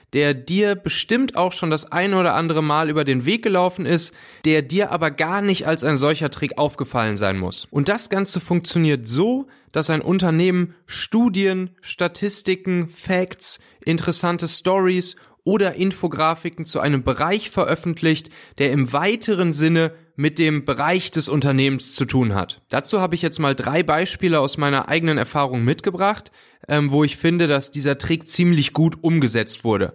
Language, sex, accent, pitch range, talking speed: German, male, German, 135-175 Hz, 160 wpm